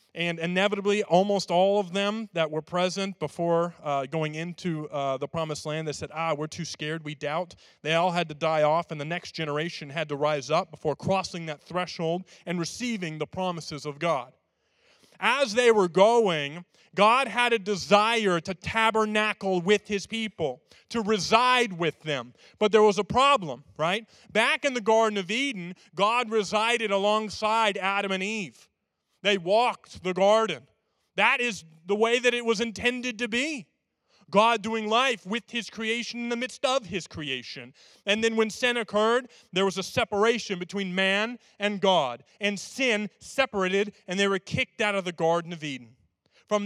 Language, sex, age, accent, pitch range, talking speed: English, male, 40-59, American, 165-220 Hz, 175 wpm